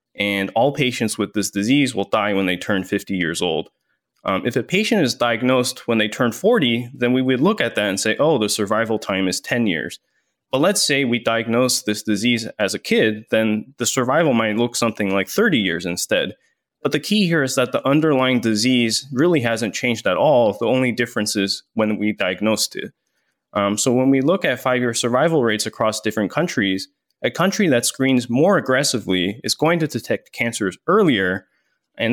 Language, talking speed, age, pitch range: English, 200 wpm, 20-39, 105-130 Hz